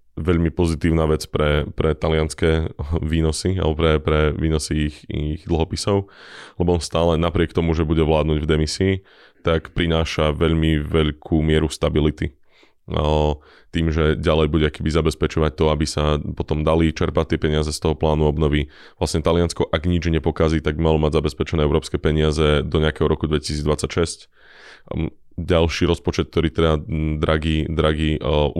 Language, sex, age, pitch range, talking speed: Slovak, male, 20-39, 75-85 Hz, 145 wpm